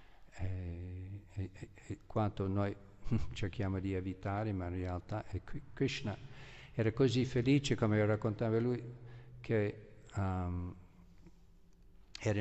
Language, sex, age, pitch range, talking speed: Italian, male, 50-69, 95-115 Hz, 110 wpm